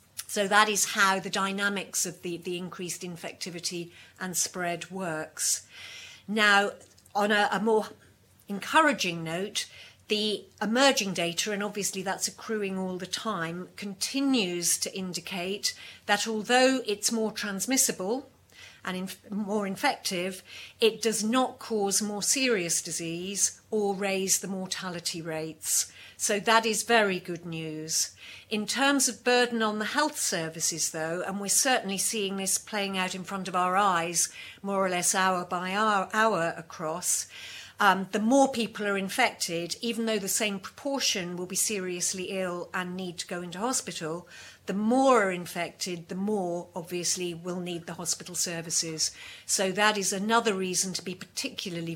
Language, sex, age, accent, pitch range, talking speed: English, female, 50-69, British, 175-210 Hz, 150 wpm